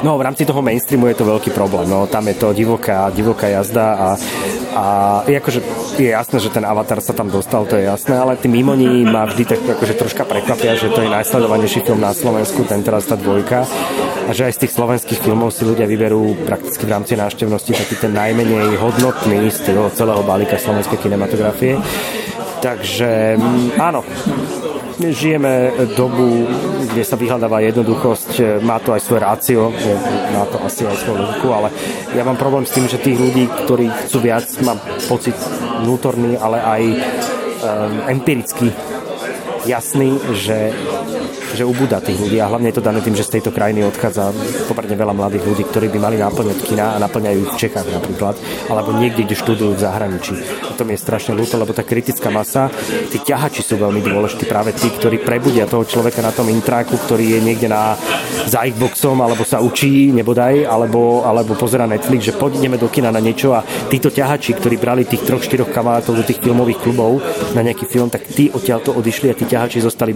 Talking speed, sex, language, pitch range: 185 wpm, male, Slovak, 110-125 Hz